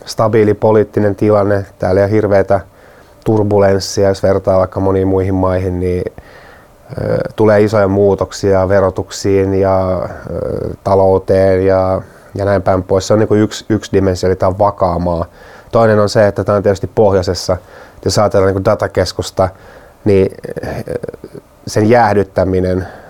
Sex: male